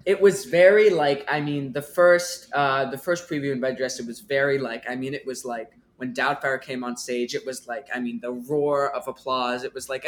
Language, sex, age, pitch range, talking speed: English, male, 20-39, 120-145 Hz, 240 wpm